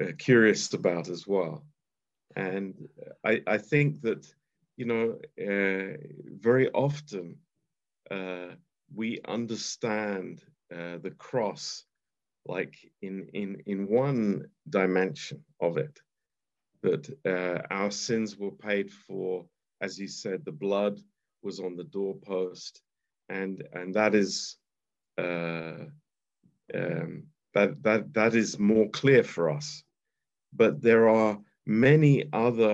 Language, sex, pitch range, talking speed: Romanian, male, 95-120 Hz, 115 wpm